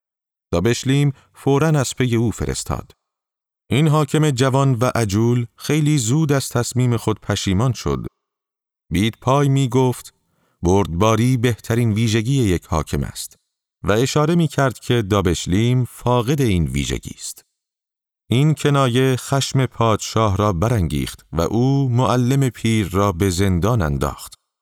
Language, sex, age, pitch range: Persian, male, 40-59, 95-130 Hz